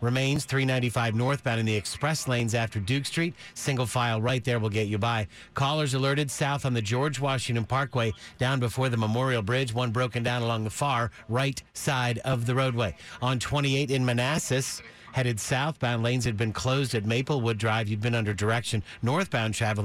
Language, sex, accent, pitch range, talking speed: English, male, American, 115-135 Hz, 185 wpm